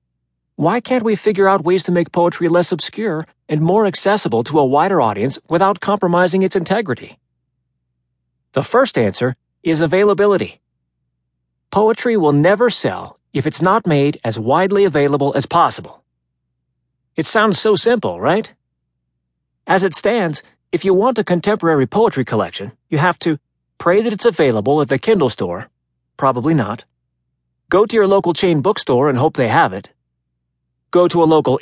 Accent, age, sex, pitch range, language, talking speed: American, 40-59, male, 110-180 Hz, English, 160 wpm